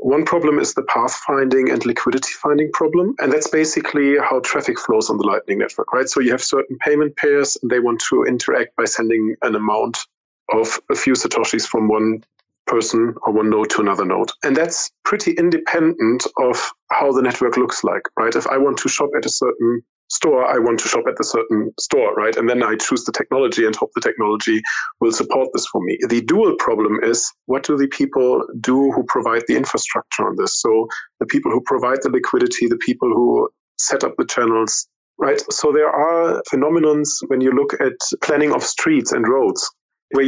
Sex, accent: male, German